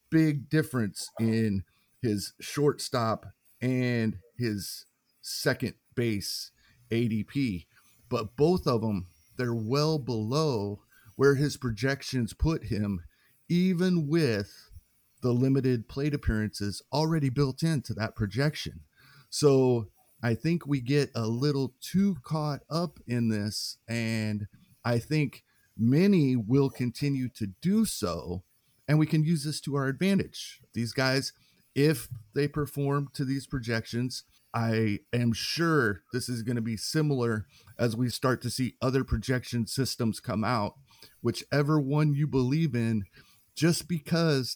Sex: male